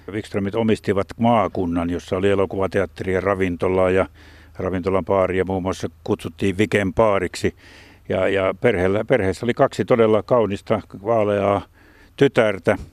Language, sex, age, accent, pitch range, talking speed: Finnish, male, 60-79, native, 90-105 Hz, 110 wpm